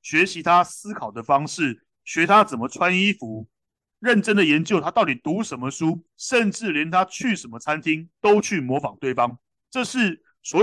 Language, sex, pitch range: Chinese, male, 135-195 Hz